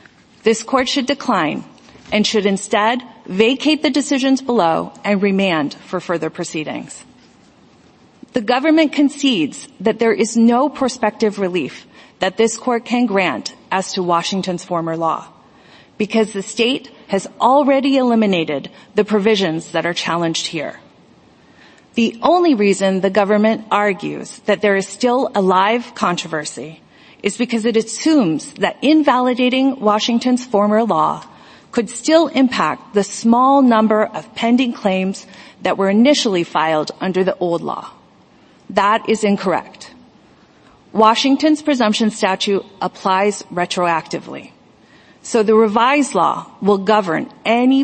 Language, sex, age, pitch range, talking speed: English, female, 40-59, 190-250 Hz, 125 wpm